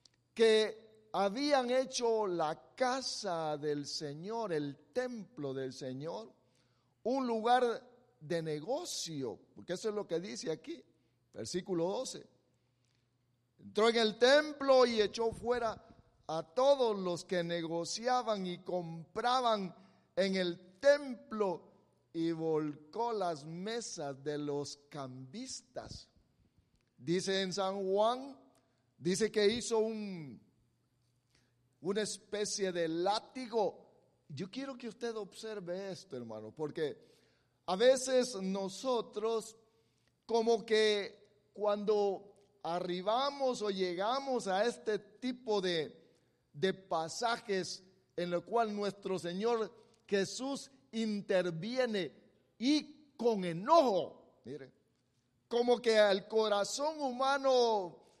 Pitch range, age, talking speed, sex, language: 165-230 Hz, 50-69, 100 wpm, male, English